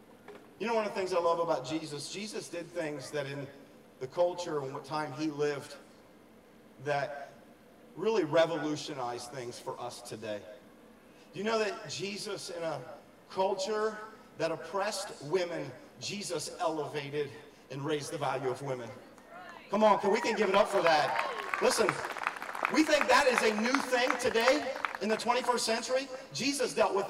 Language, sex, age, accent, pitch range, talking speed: English, male, 40-59, American, 170-235 Hz, 165 wpm